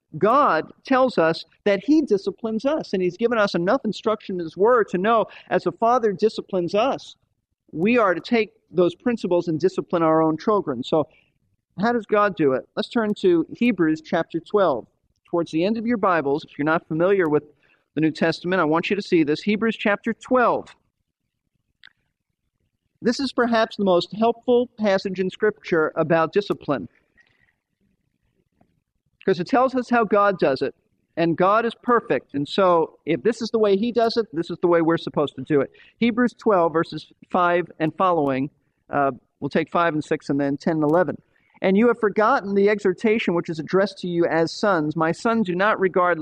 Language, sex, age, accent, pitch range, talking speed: English, male, 40-59, American, 165-220 Hz, 190 wpm